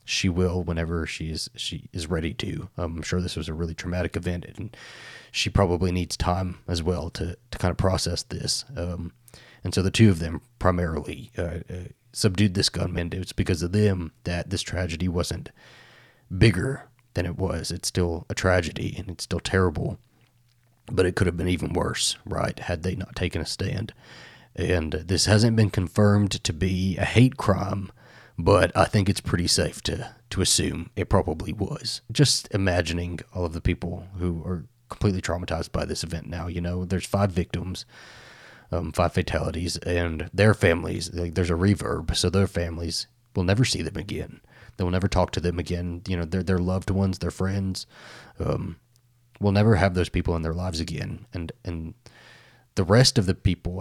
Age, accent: 30-49, American